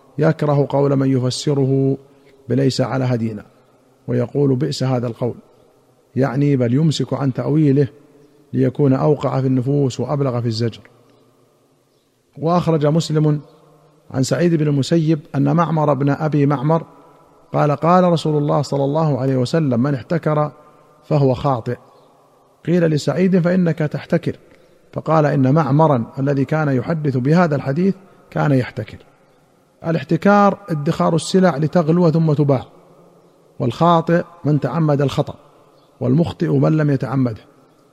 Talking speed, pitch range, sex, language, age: 115 wpm, 135-160 Hz, male, Arabic, 50-69